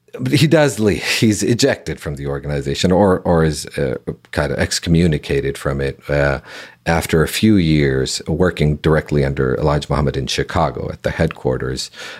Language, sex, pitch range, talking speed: English, male, 70-90 Hz, 160 wpm